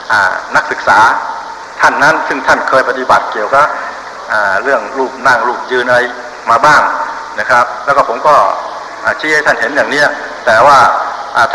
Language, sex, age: Thai, male, 60-79